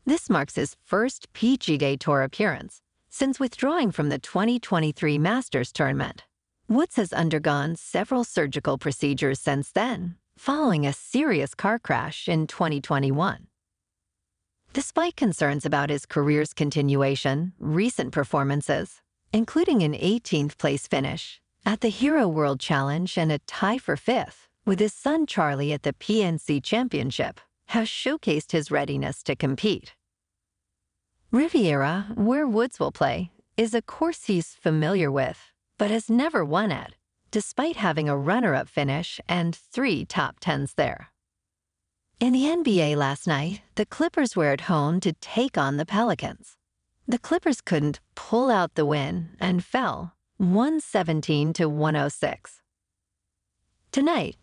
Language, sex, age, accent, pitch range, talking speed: English, female, 50-69, American, 145-230 Hz, 130 wpm